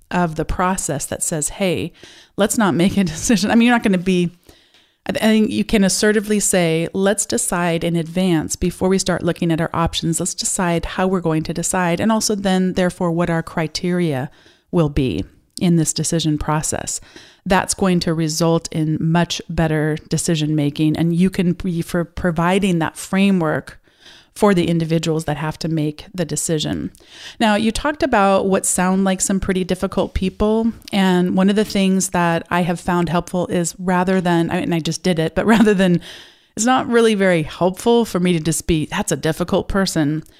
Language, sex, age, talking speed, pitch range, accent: English, female, 30-49, 185 wpm, 165-195 Hz, American